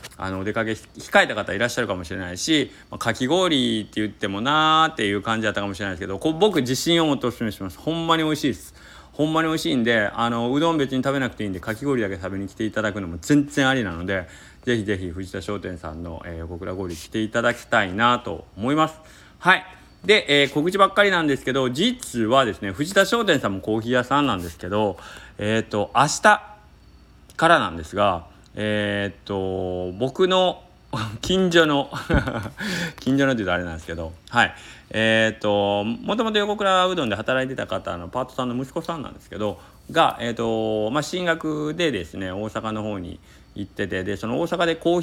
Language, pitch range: Japanese, 95-150 Hz